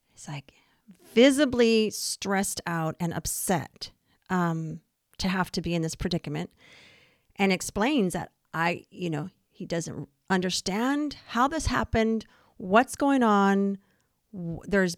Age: 40-59